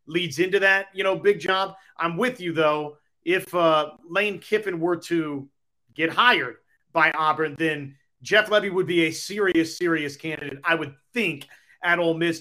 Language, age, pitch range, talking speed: English, 30-49, 160-205 Hz, 175 wpm